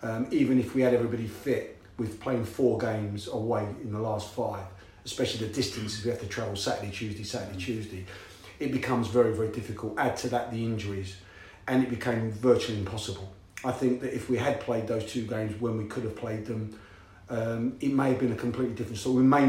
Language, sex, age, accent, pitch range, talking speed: English, male, 40-59, British, 110-125 Hz, 210 wpm